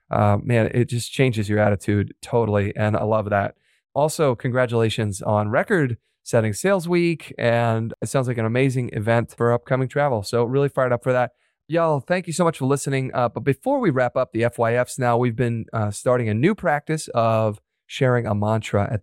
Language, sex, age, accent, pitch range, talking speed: English, male, 30-49, American, 105-135 Hz, 200 wpm